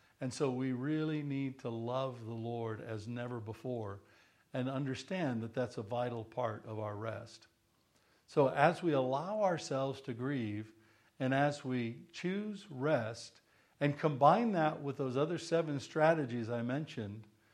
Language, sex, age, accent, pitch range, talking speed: English, male, 60-79, American, 115-150 Hz, 150 wpm